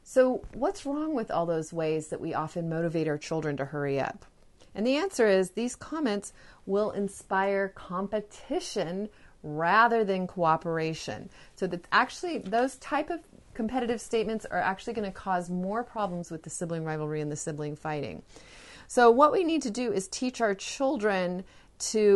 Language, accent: English, American